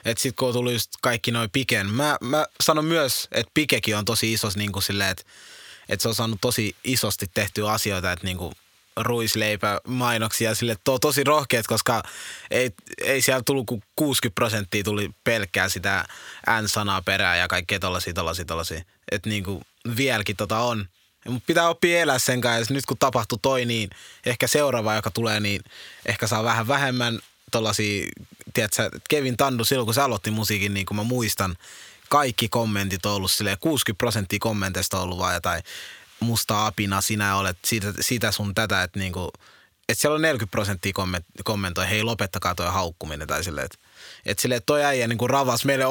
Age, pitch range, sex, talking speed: 20-39, 100-125 Hz, male, 170 wpm